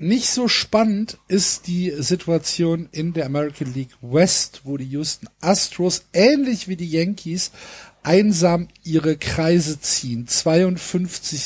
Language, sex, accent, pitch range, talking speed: German, male, German, 140-185 Hz, 125 wpm